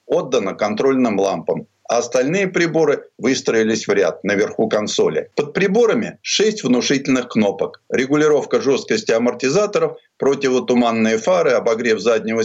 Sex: male